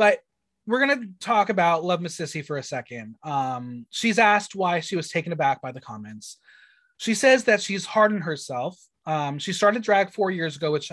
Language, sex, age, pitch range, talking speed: English, male, 20-39, 145-205 Hz, 200 wpm